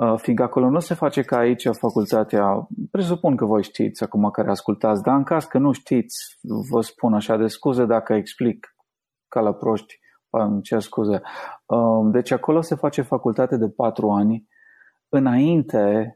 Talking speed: 155 wpm